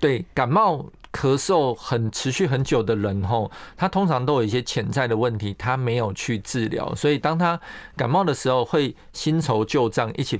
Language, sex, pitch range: Chinese, male, 115-150 Hz